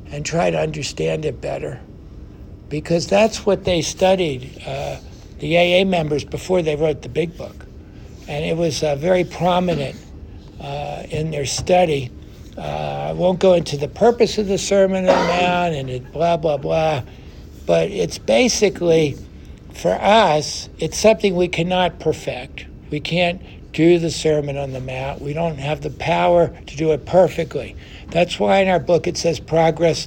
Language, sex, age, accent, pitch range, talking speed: English, male, 60-79, American, 145-180 Hz, 165 wpm